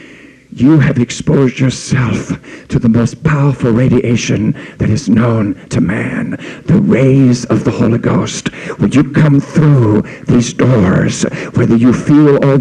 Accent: American